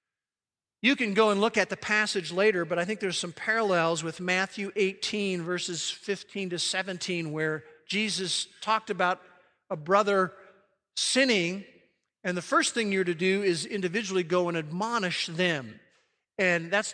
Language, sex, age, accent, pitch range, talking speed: English, male, 50-69, American, 170-205 Hz, 155 wpm